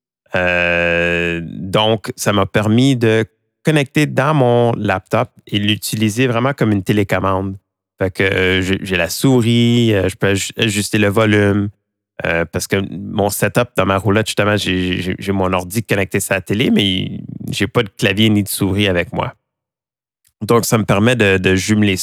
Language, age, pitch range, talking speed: French, 30-49, 95-115 Hz, 175 wpm